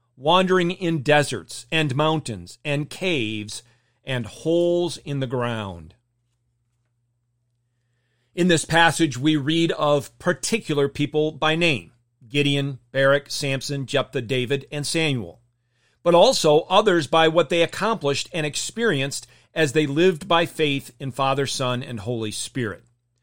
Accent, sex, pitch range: American, male, 120-165 Hz